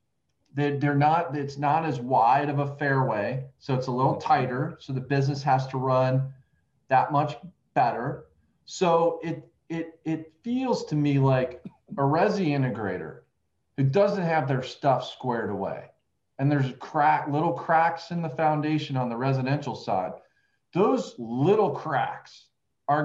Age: 40-59